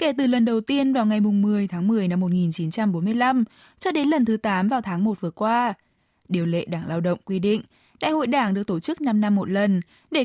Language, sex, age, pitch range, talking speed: Vietnamese, female, 20-39, 180-245 Hz, 240 wpm